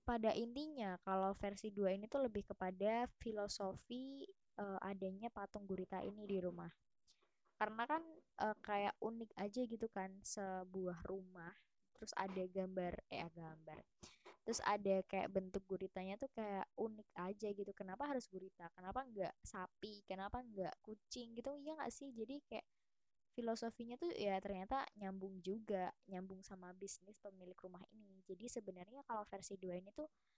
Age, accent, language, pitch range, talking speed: 20-39, native, Indonesian, 190-225 Hz, 150 wpm